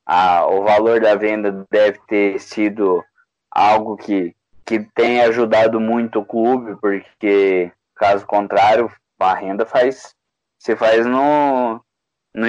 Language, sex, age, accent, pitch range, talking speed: Portuguese, male, 20-39, Brazilian, 110-140 Hz, 125 wpm